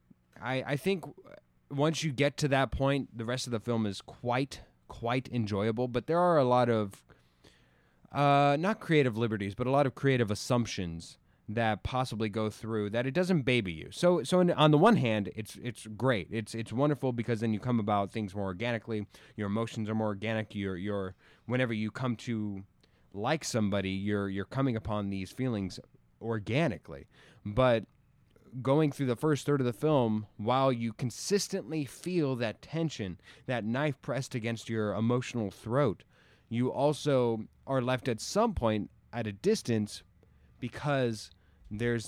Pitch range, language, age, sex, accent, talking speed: 105-135 Hz, English, 20-39, male, American, 170 wpm